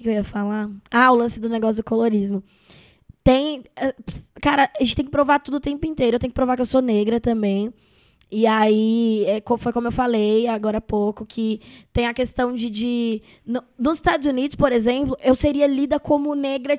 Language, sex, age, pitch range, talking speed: Portuguese, female, 10-29, 225-280 Hz, 205 wpm